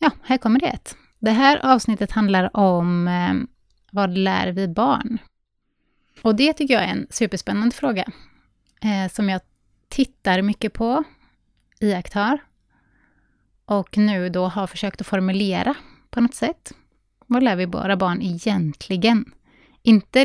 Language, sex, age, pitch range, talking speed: Swedish, female, 20-39, 180-235 Hz, 135 wpm